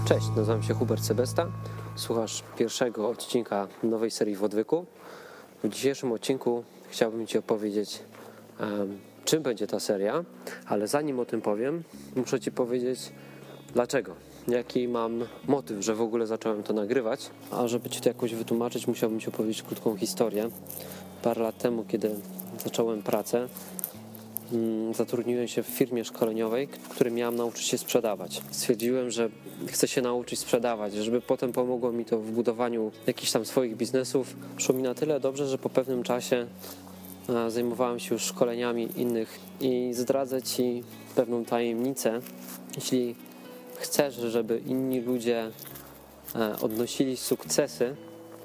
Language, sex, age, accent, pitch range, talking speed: Polish, male, 20-39, native, 110-125 Hz, 135 wpm